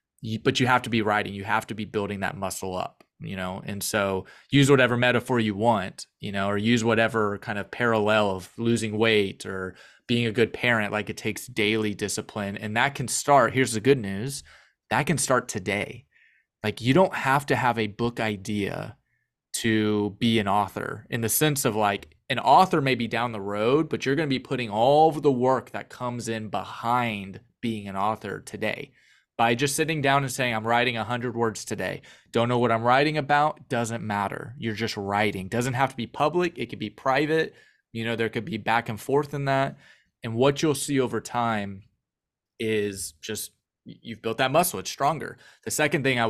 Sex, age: male, 20-39